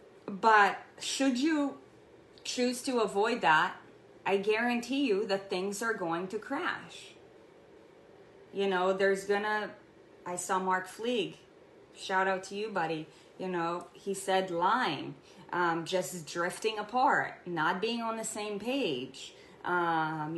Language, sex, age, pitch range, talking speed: English, female, 20-39, 180-225 Hz, 135 wpm